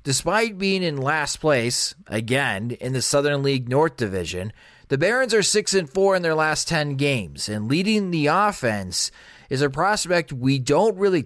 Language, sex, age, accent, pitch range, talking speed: English, male, 30-49, American, 125-160 Hz, 175 wpm